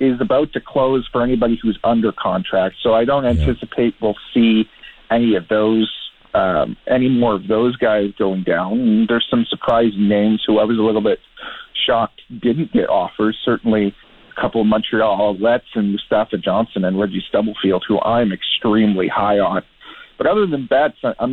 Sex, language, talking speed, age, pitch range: male, English, 175 wpm, 40-59, 110-135 Hz